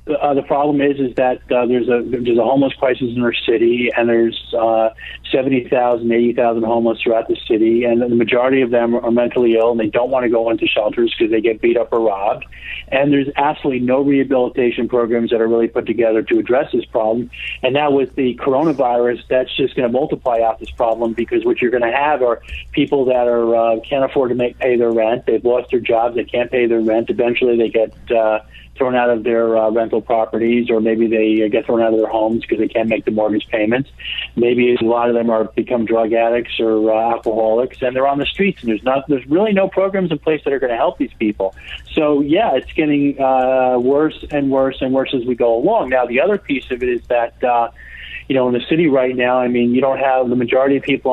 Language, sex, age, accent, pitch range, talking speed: English, male, 40-59, American, 115-135 Hz, 240 wpm